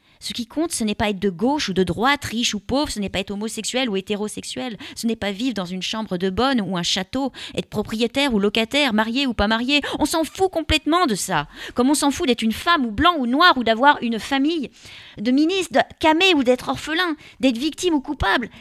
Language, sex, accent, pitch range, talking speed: French, female, French, 170-255 Hz, 240 wpm